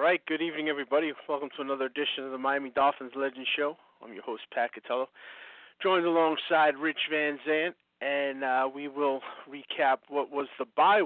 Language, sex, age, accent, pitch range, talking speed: English, male, 40-59, American, 140-170 Hz, 180 wpm